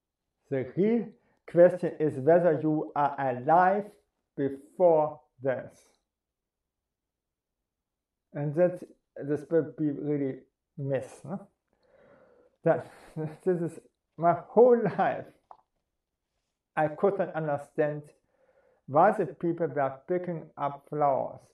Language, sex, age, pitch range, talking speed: English, male, 50-69, 140-185 Hz, 90 wpm